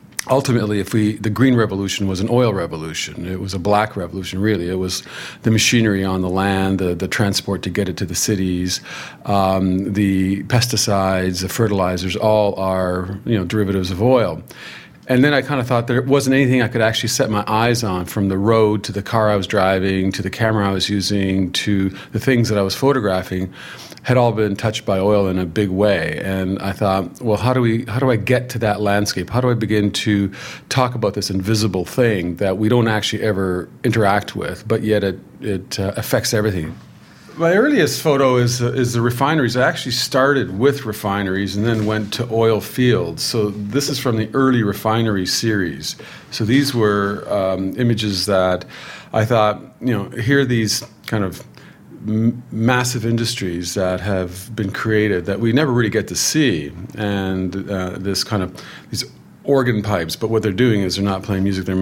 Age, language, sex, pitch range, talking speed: 40-59, English, male, 95-120 Hz, 200 wpm